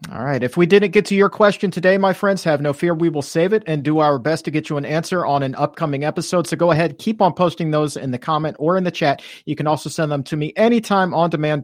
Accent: American